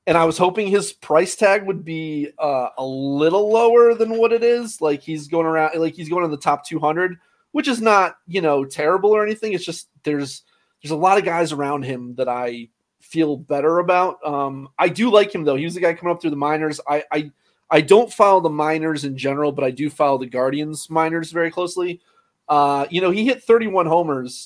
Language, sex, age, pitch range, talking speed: English, male, 30-49, 145-180 Hz, 225 wpm